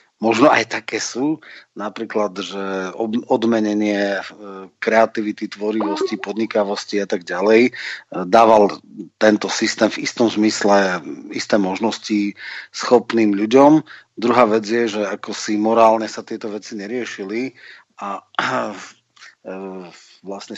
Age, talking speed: 40-59, 105 wpm